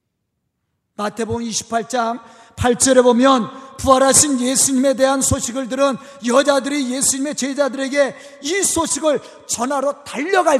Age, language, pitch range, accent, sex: 40-59, Korean, 235-335 Hz, native, male